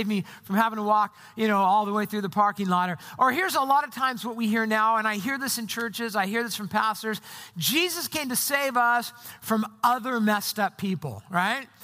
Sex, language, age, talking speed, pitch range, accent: male, English, 50-69, 235 wpm, 205-280 Hz, American